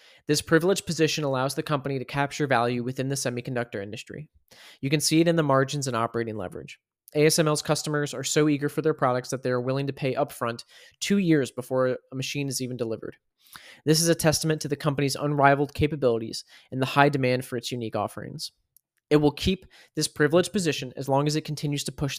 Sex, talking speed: male, 205 wpm